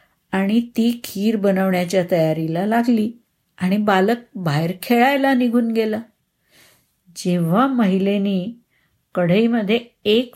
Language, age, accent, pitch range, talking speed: Marathi, 50-69, native, 170-215 Hz, 95 wpm